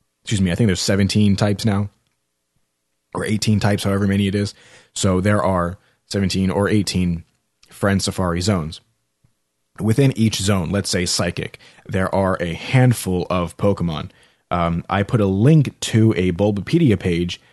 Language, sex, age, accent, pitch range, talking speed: English, male, 30-49, American, 90-105 Hz, 155 wpm